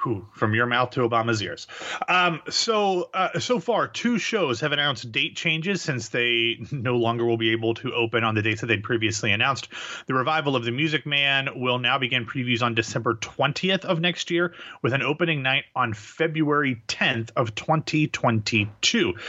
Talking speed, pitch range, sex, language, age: 180 wpm, 115-150 Hz, male, English, 30-49